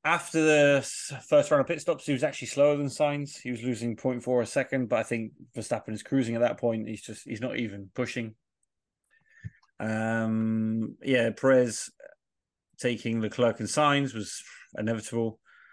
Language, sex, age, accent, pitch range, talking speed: English, male, 30-49, British, 110-130 Hz, 170 wpm